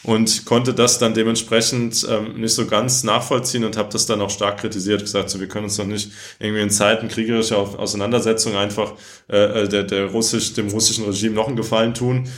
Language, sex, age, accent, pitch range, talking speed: German, male, 20-39, German, 105-115 Hz, 200 wpm